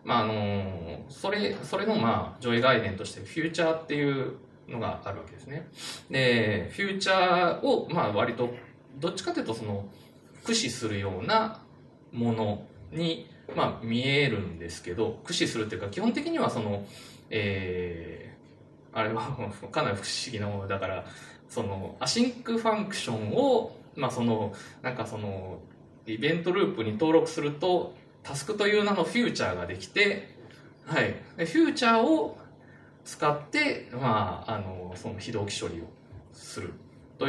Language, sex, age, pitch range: Japanese, male, 20-39, 105-160 Hz